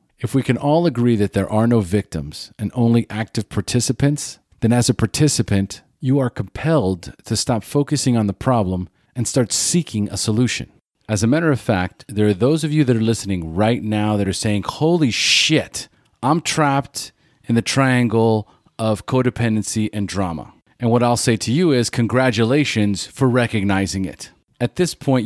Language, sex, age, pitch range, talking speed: English, male, 40-59, 100-125 Hz, 180 wpm